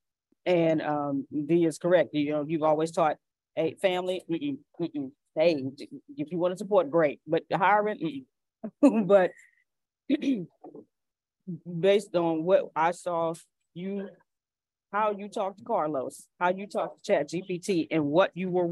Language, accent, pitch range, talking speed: English, American, 160-200 Hz, 145 wpm